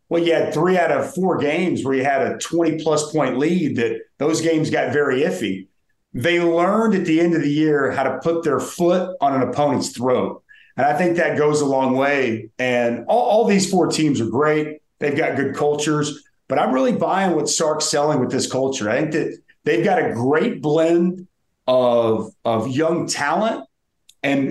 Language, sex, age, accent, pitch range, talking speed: English, male, 40-59, American, 140-170 Hz, 200 wpm